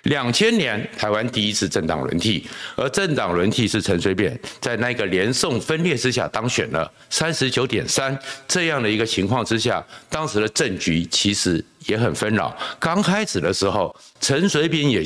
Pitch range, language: 100-140 Hz, Chinese